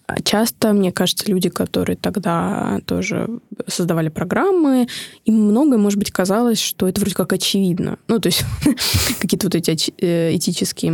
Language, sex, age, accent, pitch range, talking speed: Russian, female, 20-39, native, 170-205 Hz, 150 wpm